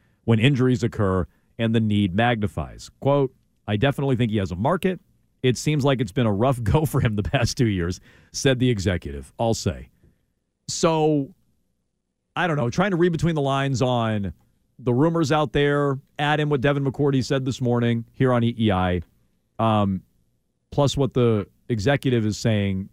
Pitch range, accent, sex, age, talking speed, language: 110-150 Hz, American, male, 40-59, 175 wpm, English